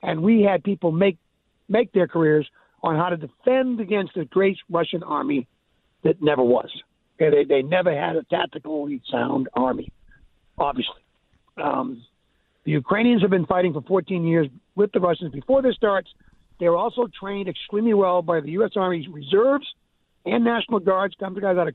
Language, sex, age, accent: English, male, 60-79, American